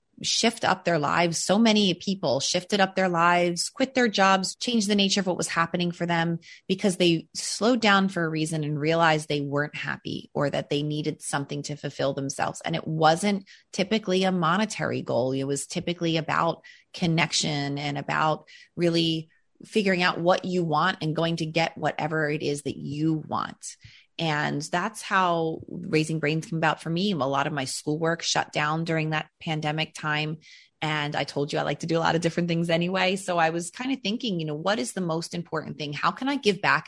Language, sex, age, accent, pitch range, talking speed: English, female, 30-49, American, 150-180 Hz, 205 wpm